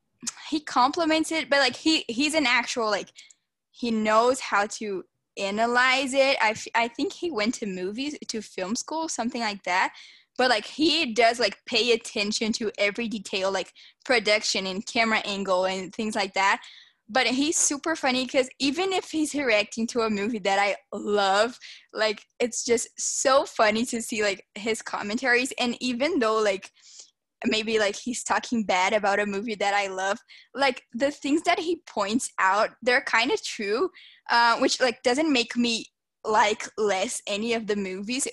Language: English